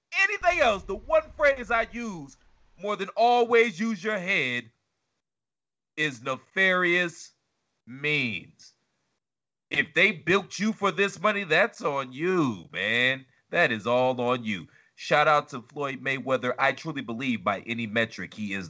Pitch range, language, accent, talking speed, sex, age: 115-190 Hz, English, American, 145 wpm, male, 30-49